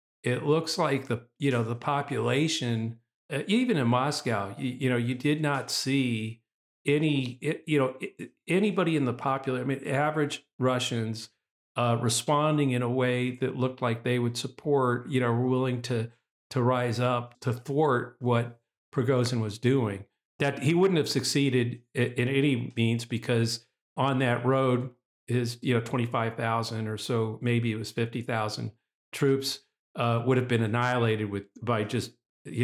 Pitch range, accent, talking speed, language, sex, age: 110-135 Hz, American, 165 wpm, English, male, 50-69